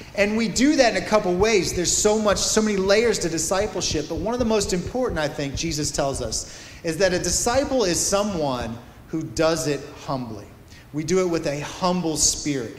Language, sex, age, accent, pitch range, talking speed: English, male, 30-49, American, 130-190 Hz, 210 wpm